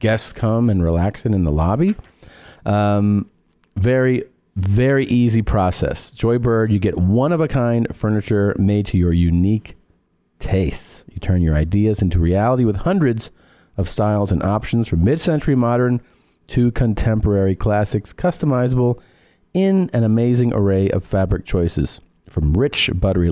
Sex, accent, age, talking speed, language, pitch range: male, American, 40-59, 135 wpm, English, 90-125 Hz